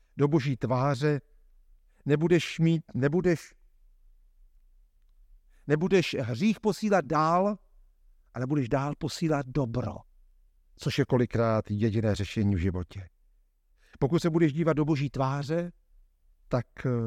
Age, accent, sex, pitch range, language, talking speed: 50-69, native, male, 105-165 Hz, Czech, 105 wpm